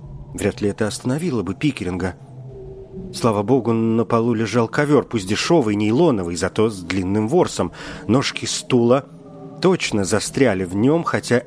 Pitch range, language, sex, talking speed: 105-135 Hz, Russian, male, 135 wpm